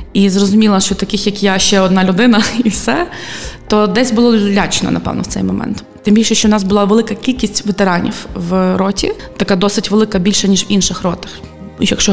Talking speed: 195 wpm